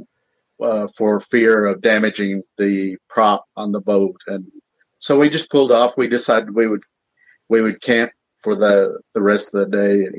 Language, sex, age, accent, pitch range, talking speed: English, male, 50-69, American, 105-125 Hz, 185 wpm